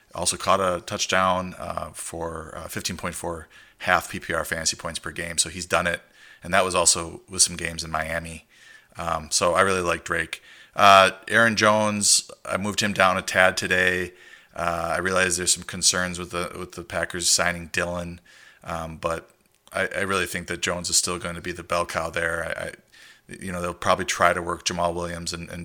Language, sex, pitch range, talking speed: English, male, 85-90 Hz, 200 wpm